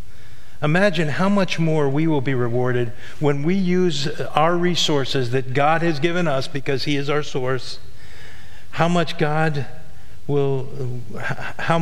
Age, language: 50-69, English